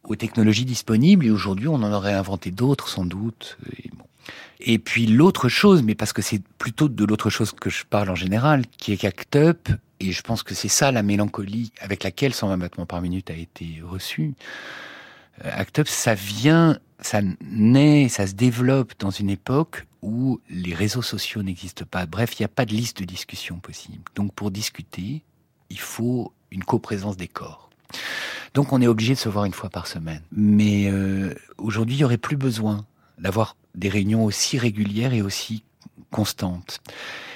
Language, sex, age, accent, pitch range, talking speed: French, male, 50-69, French, 95-120 Hz, 185 wpm